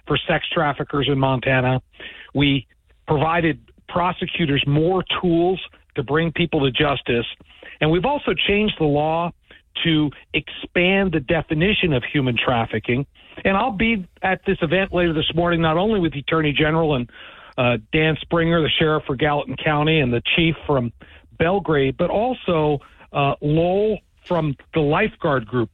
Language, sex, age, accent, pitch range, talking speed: English, male, 50-69, American, 140-175 Hz, 150 wpm